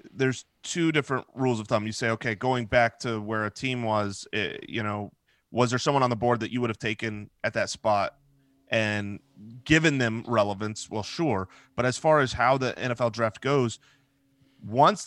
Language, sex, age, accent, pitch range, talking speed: English, male, 30-49, American, 110-130 Hz, 195 wpm